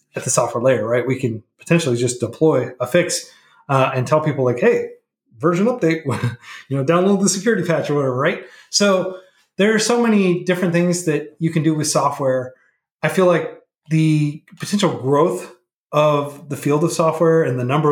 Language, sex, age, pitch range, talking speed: English, male, 30-49, 135-175 Hz, 190 wpm